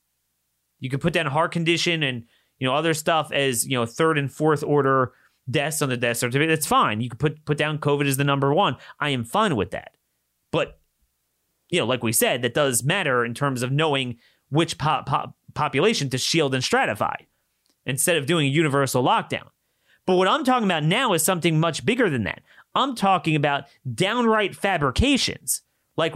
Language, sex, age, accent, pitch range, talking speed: English, male, 30-49, American, 120-165 Hz, 195 wpm